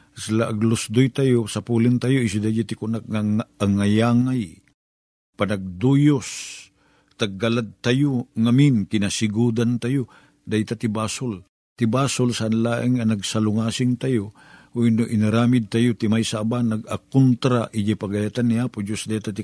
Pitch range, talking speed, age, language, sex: 110-130 Hz, 120 wpm, 50-69, Filipino, male